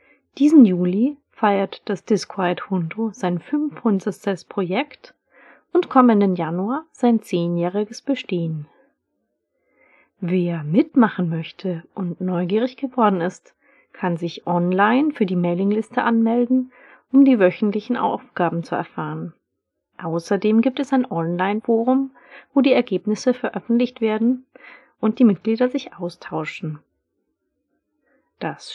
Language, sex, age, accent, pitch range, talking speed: English, female, 30-49, German, 180-255 Hz, 105 wpm